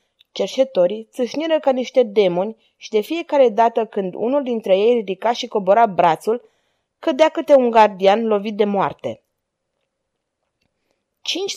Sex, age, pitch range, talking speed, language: female, 20-39, 195-255 Hz, 130 wpm, Romanian